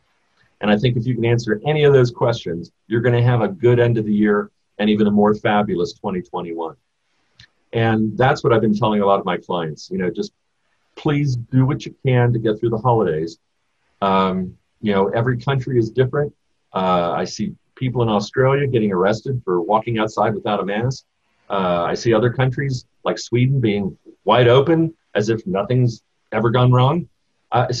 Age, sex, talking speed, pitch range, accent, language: 40-59, male, 190 wpm, 105-130 Hz, American, English